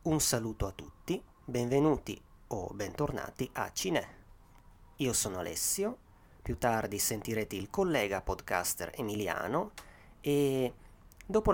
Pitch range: 100-135 Hz